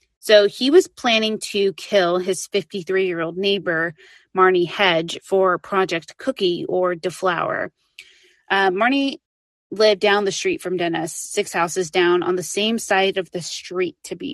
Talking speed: 145 wpm